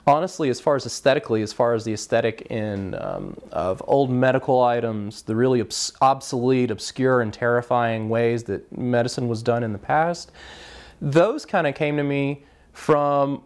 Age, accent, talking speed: 30-49, American, 170 wpm